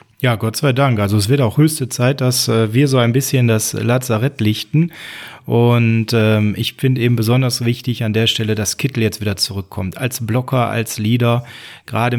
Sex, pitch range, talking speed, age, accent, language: male, 120-145 Hz, 190 wpm, 30-49, German, German